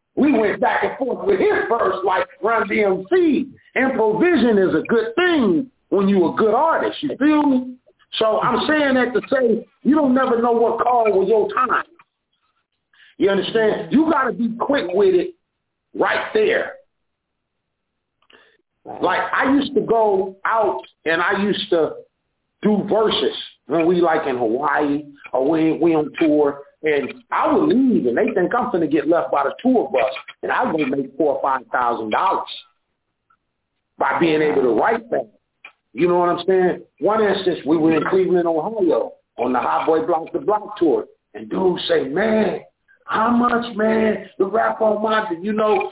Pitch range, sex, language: 190-300 Hz, male, English